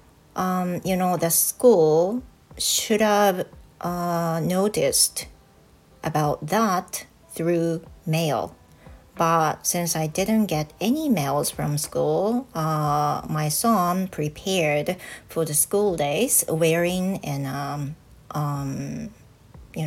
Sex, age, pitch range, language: female, 40-59, 155-205 Hz, Japanese